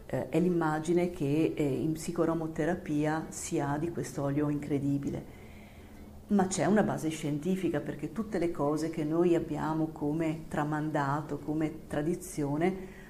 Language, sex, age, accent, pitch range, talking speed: Italian, female, 40-59, native, 150-180 Hz, 125 wpm